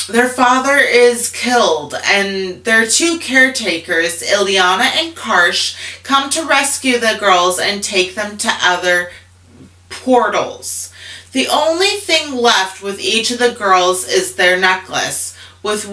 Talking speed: 130 wpm